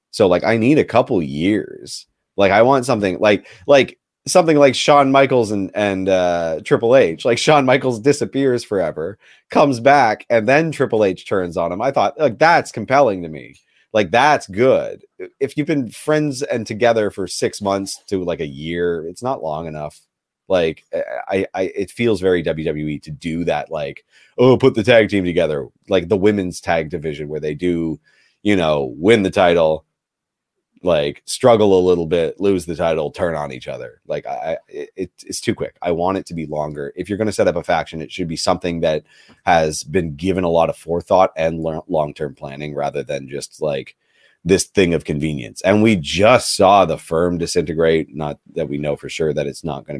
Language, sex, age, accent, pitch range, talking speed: English, male, 30-49, American, 80-115 Hz, 200 wpm